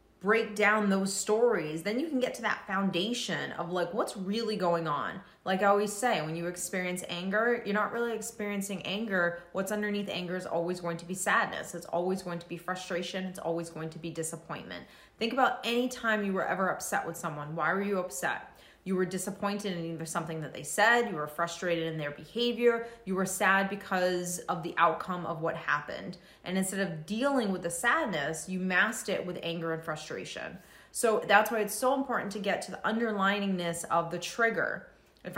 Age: 20-39